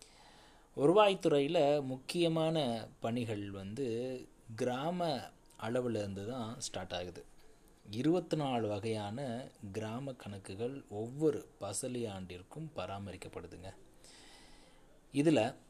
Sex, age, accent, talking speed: male, 20-39, native, 75 wpm